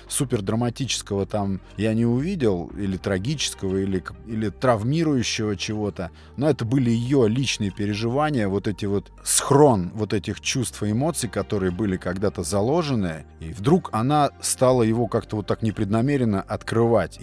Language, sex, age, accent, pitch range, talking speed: Russian, male, 30-49, native, 95-120 Hz, 145 wpm